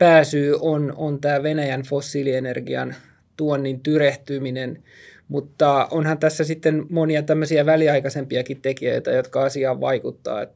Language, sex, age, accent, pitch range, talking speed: Finnish, male, 20-39, native, 140-160 Hz, 110 wpm